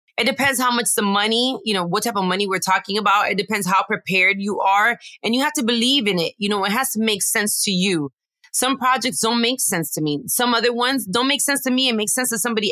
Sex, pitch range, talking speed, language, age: female, 185-235 Hz, 270 wpm, English, 20-39